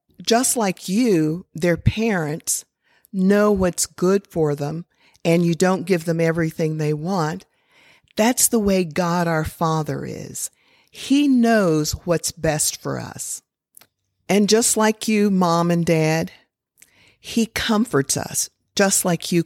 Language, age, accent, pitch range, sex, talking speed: English, 50-69, American, 160-210 Hz, female, 135 wpm